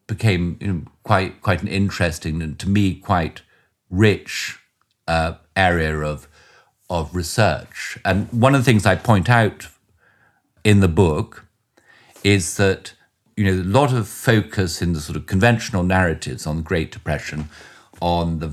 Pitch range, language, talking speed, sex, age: 80-100 Hz, English, 155 wpm, male, 50-69